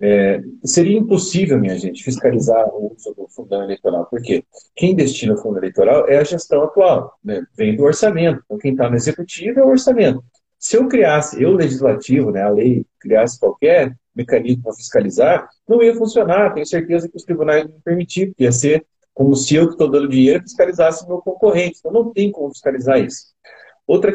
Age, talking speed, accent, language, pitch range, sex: 40-59, 185 wpm, Brazilian, Portuguese, 130-215 Hz, male